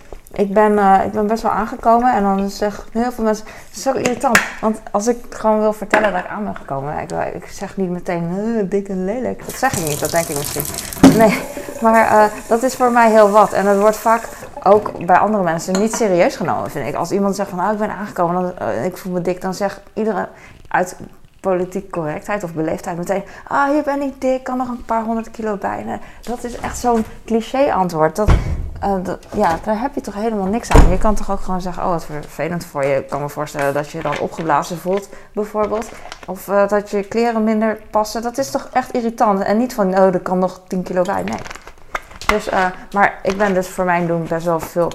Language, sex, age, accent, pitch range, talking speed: Dutch, female, 20-39, Dutch, 175-220 Hz, 240 wpm